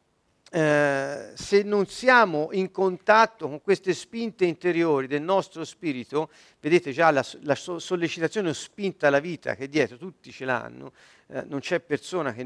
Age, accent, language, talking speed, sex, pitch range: 50-69, native, Italian, 150 wpm, male, 155-245 Hz